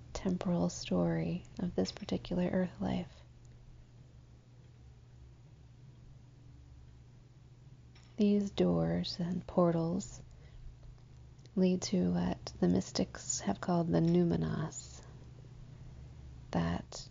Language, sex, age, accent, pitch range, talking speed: English, female, 30-49, American, 120-175 Hz, 70 wpm